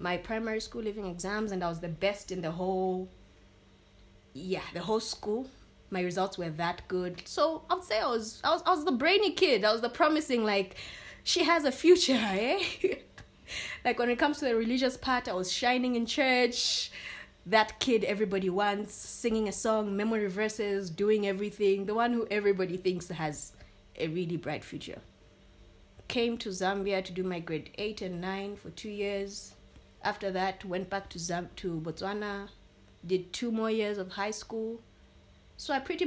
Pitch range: 185-245 Hz